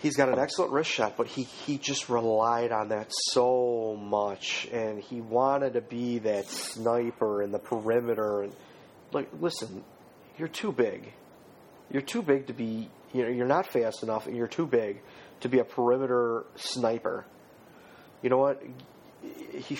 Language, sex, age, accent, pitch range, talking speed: English, male, 40-59, American, 110-135 Hz, 165 wpm